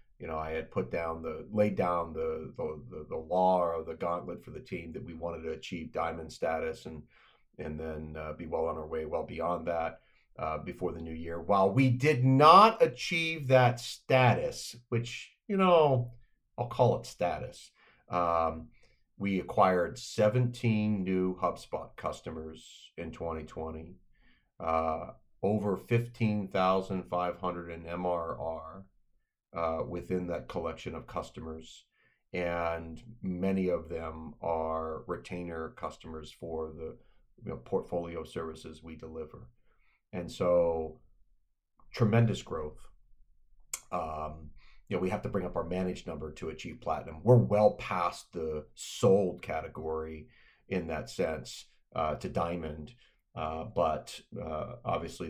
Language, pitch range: English, 80-105 Hz